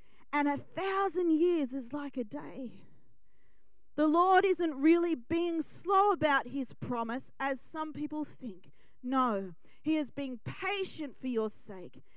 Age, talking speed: 40-59, 145 wpm